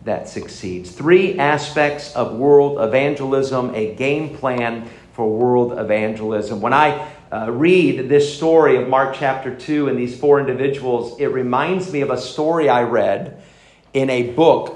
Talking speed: 155 wpm